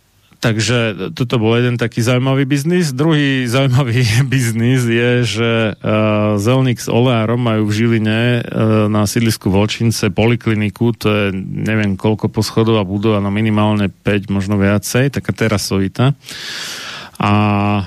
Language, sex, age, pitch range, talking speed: Slovak, male, 30-49, 105-120 Hz, 130 wpm